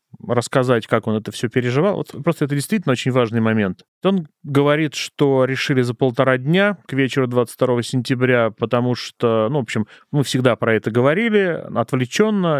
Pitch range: 120-150 Hz